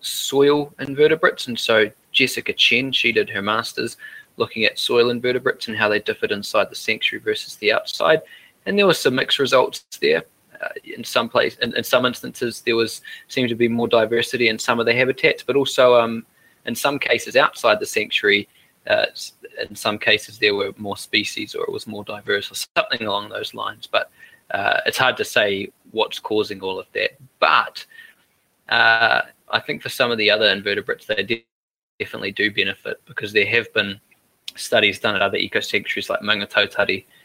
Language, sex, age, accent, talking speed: English, male, 20-39, Australian, 185 wpm